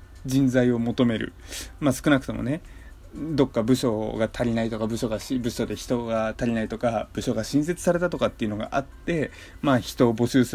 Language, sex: Japanese, male